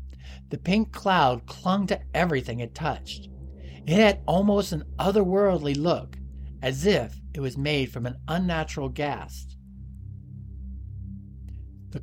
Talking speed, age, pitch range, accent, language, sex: 120 wpm, 50-69, 100-155 Hz, American, English, male